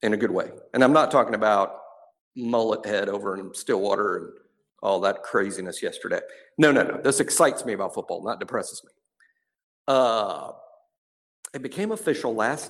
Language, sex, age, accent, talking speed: English, male, 50-69, American, 165 wpm